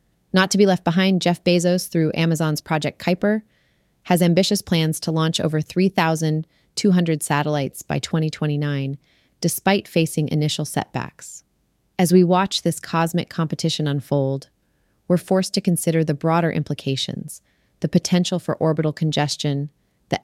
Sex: female